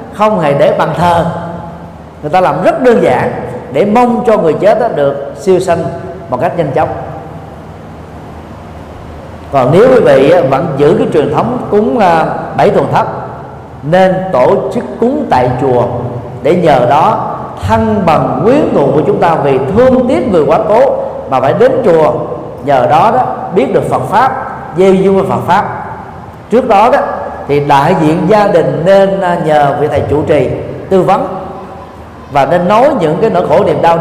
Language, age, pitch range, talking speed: Vietnamese, 40-59, 115-190 Hz, 170 wpm